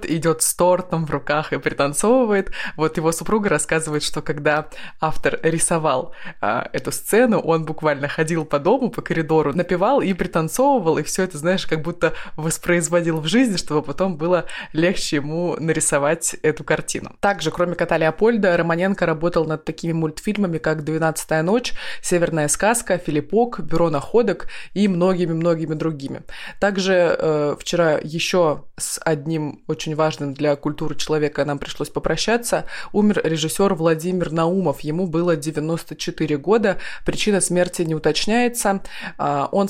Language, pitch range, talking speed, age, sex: Russian, 155-180 Hz, 140 wpm, 20-39, female